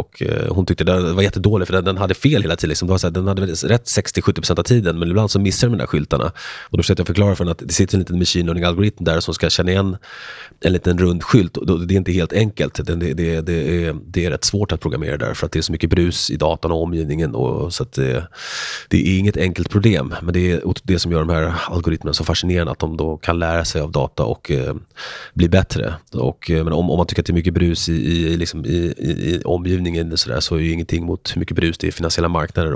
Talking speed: 260 wpm